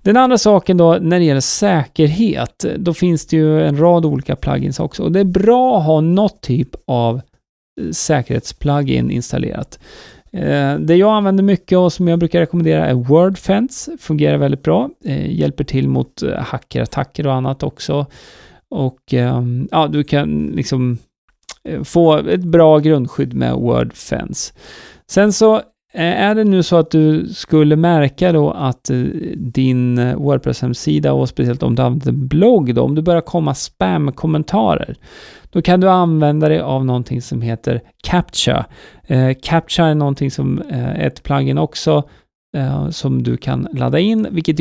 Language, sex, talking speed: Swedish, male, 150 wpm